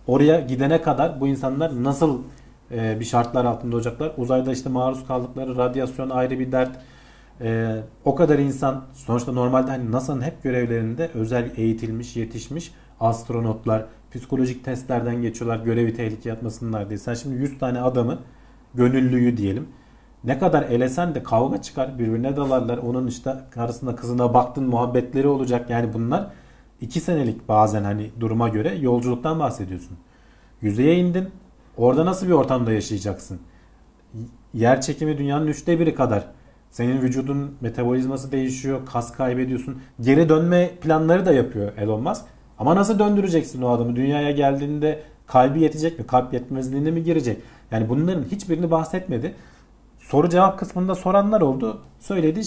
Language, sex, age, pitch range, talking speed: Turkish, male, 40-59, 115-145 Hz, 140 wpm